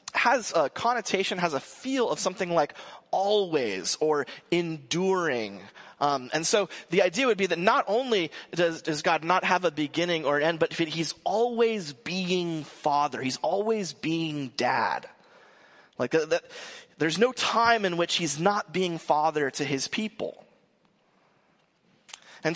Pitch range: 155-200 Hz